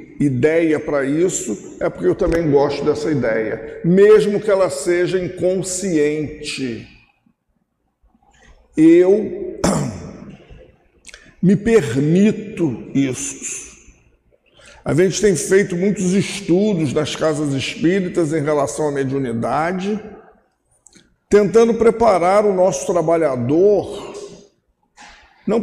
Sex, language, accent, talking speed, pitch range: male, Portuguese, Brazilian, 90 wpm, 155-205 Hz